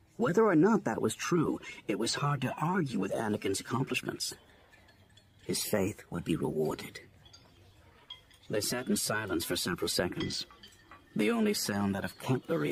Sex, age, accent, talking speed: male, 50-69, American, 150 wpm